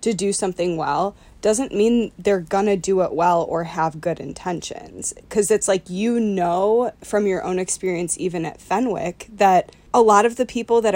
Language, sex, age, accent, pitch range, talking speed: English, female, 20-39, American, 175-215 Hz, 185 wpm